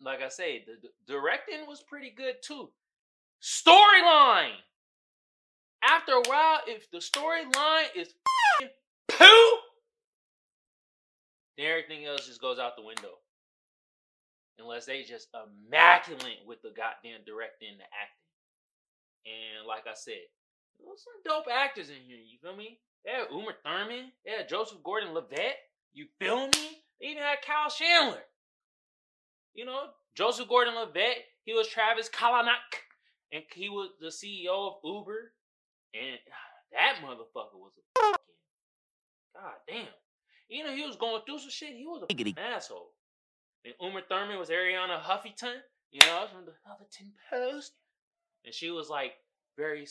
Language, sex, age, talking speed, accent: English, male, 20-39, 145 wpm, American